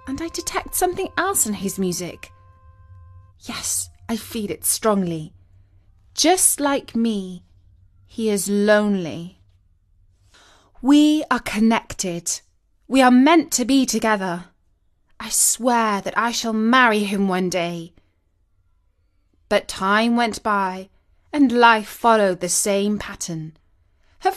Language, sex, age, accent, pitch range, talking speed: English, female, 20-39, British, 160-235 Hz, 120 wpm